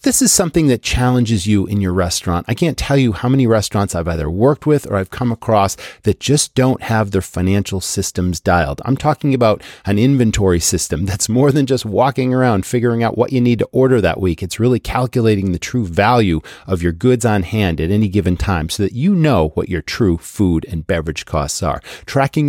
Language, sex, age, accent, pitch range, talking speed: English, male, 40-59, American, 95-135 Hz, 215 wpm